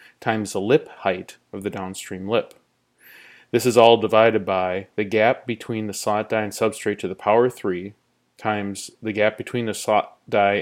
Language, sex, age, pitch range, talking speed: English, male, 30-49, 100-120 Hz, 180 wpm